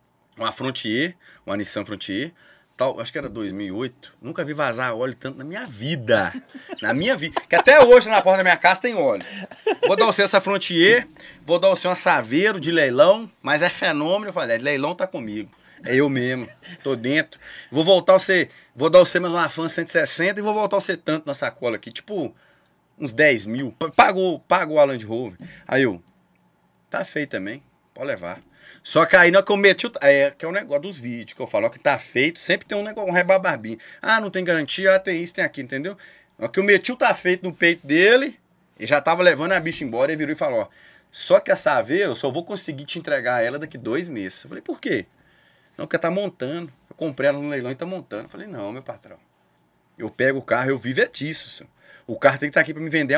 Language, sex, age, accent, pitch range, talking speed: Portuguese, male, 20-39, Brazilian, 140-205 Hz, 235 wpm